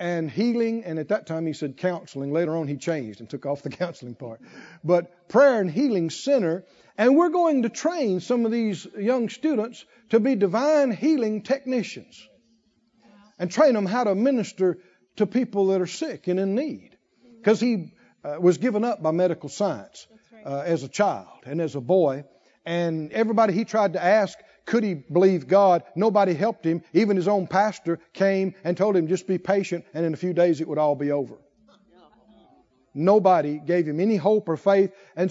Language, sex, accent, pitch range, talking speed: English, male, American, 170-230 Hz, 185 wpm